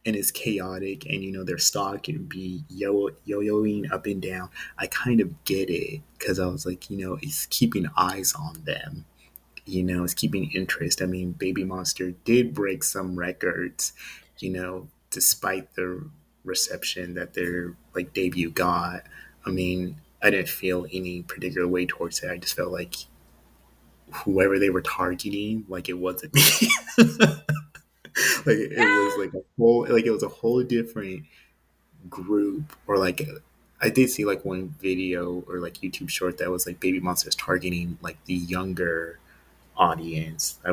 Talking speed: 165 wpm